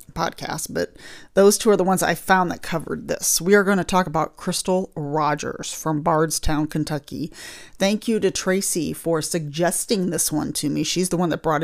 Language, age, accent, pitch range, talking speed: English, 30-49, American, 165-200 Hz, 195 wpm